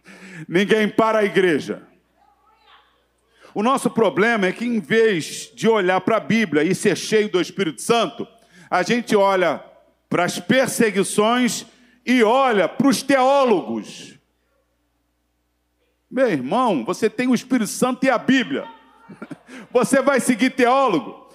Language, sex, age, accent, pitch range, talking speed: Portuguese, male, 50-69, Brazilian, 155-240 Hz, 130 wpm